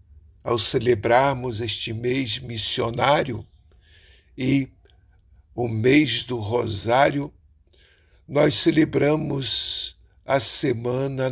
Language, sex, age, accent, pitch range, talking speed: Portuguese, male, 60-79, Brazilian, 95-145 Hz, 75 wpm